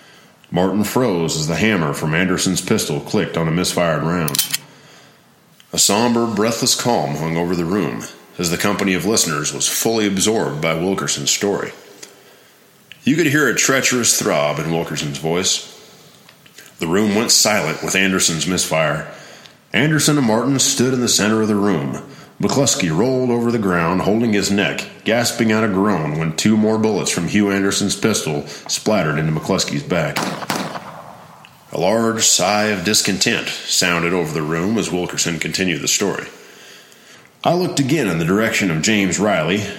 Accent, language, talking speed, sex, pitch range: American, English, 160 wpm, male, 85-110 Hz